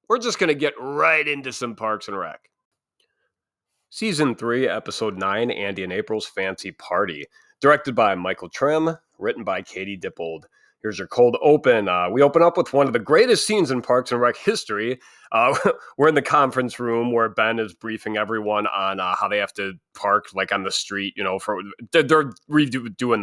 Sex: male